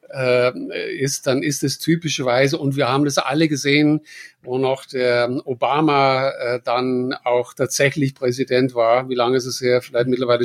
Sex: male